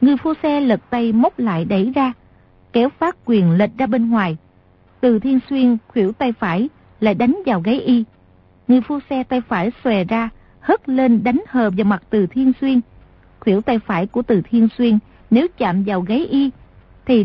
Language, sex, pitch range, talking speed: Vietnamese, female, 200-260 Hz, 195 wpm